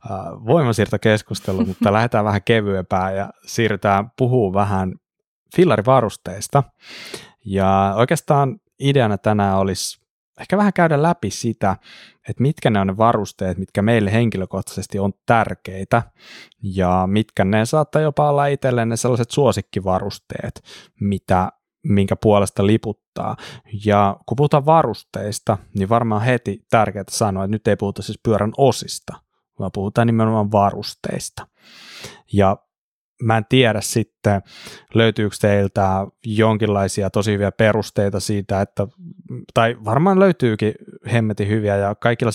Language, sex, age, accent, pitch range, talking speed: Finnish, male, 20-39, native, 100-120 Hz, 120 wpm